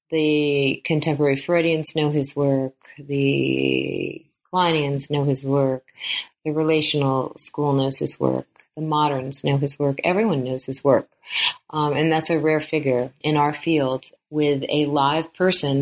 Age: 30-49